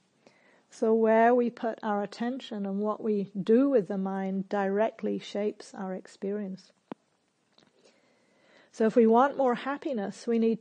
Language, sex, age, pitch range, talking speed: English, female, 50-69, 200-235 Hz, 140 wpm